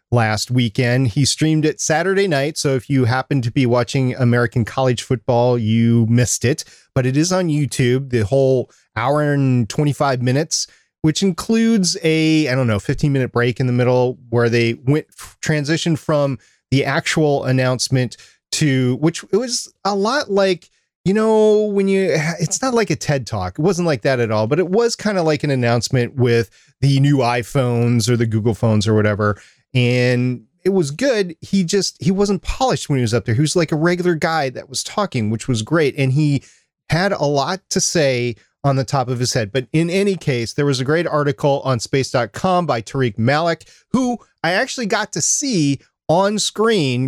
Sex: male